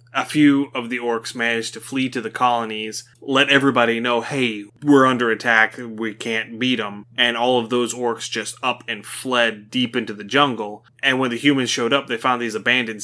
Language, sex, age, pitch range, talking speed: English, male, 20-39, 110-125 Hz, 205 wpm